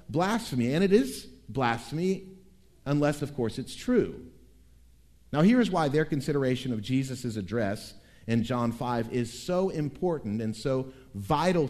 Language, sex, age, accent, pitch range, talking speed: English, male, 50-69, American, 105-160 Hz, 145 wpm